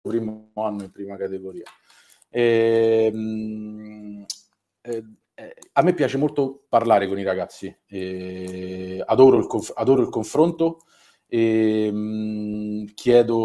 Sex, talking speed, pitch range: male, 100 wpm, 100-115 Hz